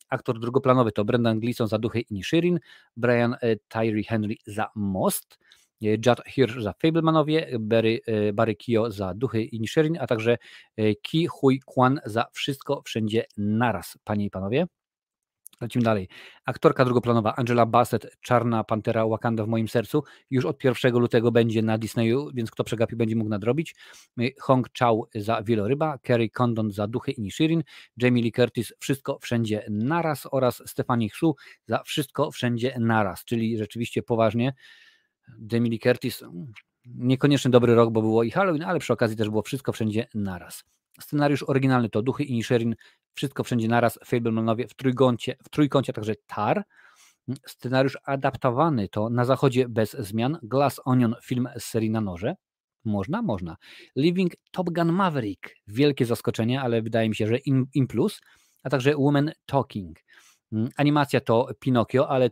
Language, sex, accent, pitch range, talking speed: Polish, male, native, 110-135 Hz, 155 wpm